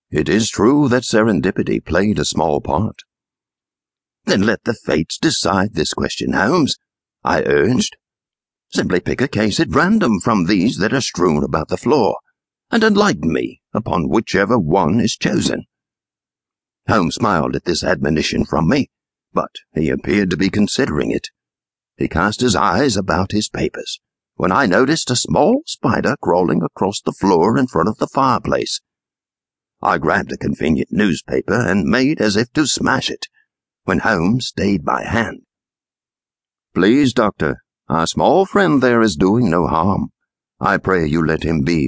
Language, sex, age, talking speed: English, male, 60-79, 160 wpm